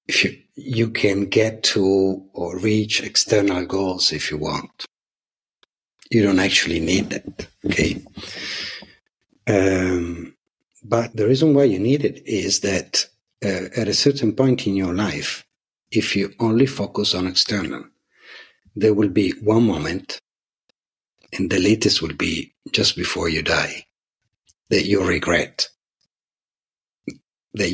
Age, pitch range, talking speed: 60-79, 90-110 Hz, 130 wpm